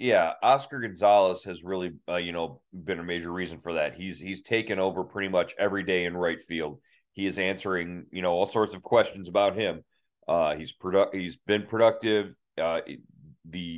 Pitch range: 90-105 Hz